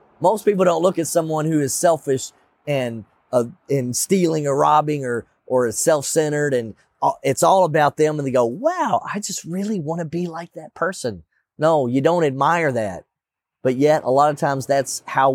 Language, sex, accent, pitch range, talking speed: English, male, American, 115-165 Hz, 190 wpm